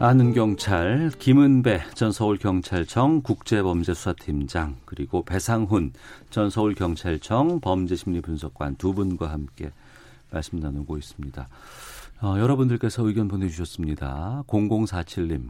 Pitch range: 80-120 Hz